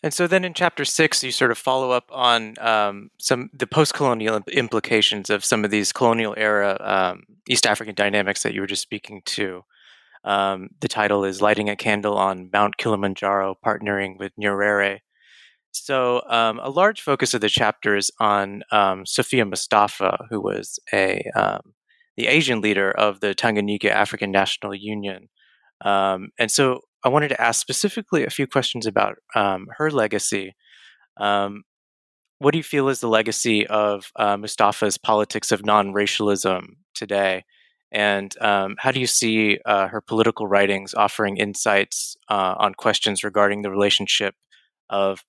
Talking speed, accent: 160 wpm, American